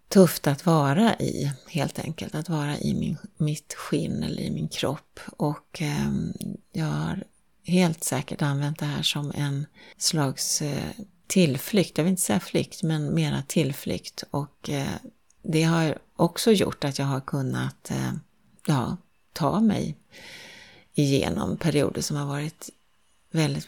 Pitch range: 145-185 Hz